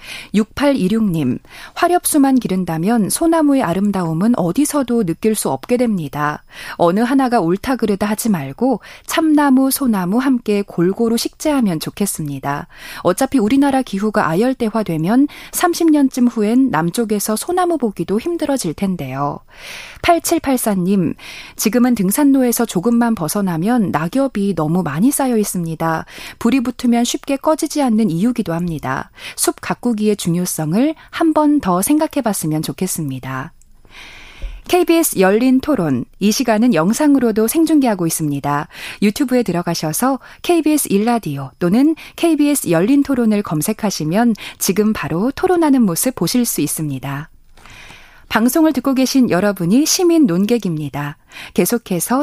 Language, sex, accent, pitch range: Korean, female, native, 175-270 Hz